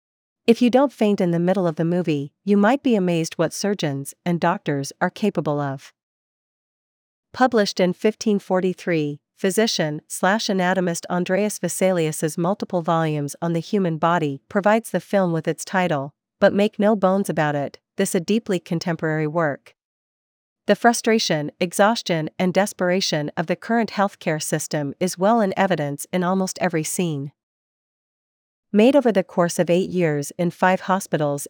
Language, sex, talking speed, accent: English, female, 150 wpm, American